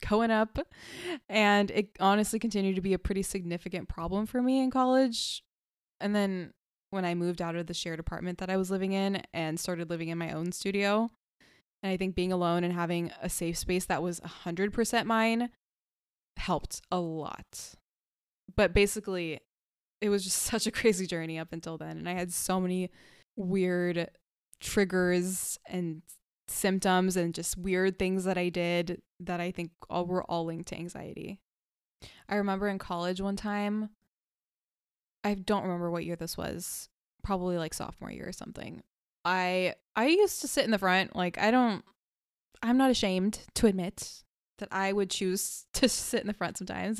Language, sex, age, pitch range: English, female, 20-39, 175-210 Hz